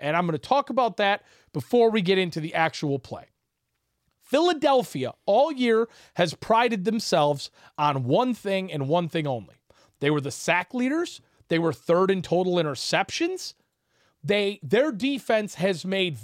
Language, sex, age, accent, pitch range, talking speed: English, male, 30-49, American, 165-270 Hz, 160 wpm